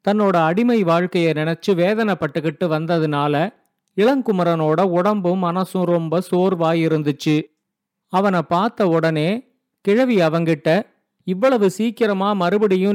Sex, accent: male, native